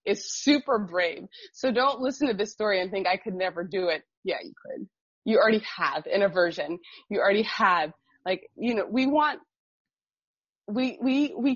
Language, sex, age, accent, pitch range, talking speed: English, female, 20-39, American, 185-255 Hz, 180 wpm